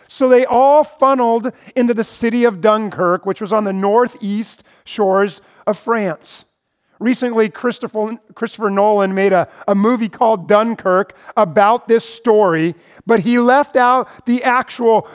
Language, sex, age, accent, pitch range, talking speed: English, male, 40-59, American, 210-255 Hz, 135 wpm